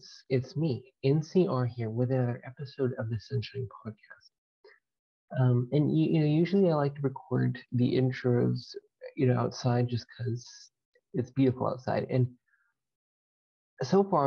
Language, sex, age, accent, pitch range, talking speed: English, male, 30-49, American, 115-135 Hz, 145 wpm